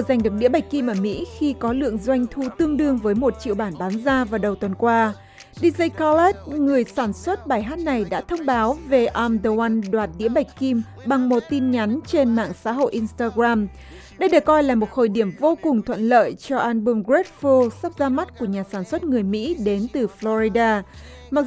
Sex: female